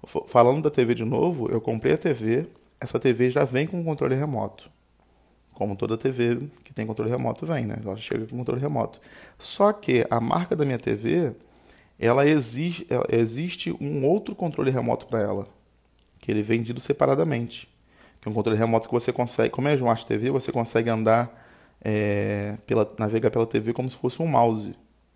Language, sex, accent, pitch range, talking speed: Portuguese, male, Brazilian, 110-155 Hz, 185 wpm